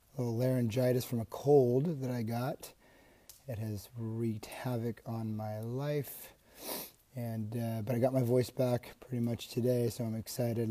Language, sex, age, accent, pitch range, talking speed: English, male, 30-49, American, 110-125 Hz, 160 wpm